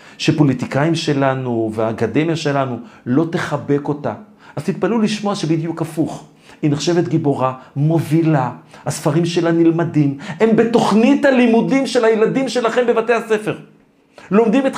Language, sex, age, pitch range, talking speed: Hebrew, male, 50-69, 150-220 Hz, 120 wpm